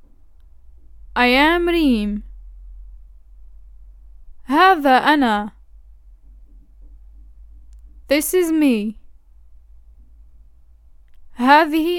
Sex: female